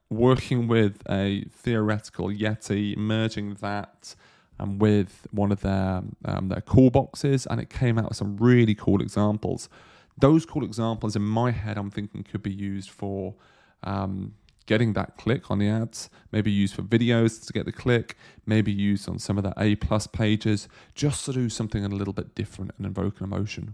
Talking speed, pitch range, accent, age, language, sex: 180 wpm, 100-115 Hz, British, 30-49, English, male